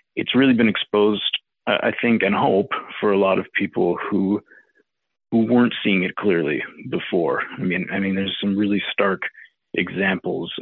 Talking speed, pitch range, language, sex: 165 wpm, 95-110 Hz, English, male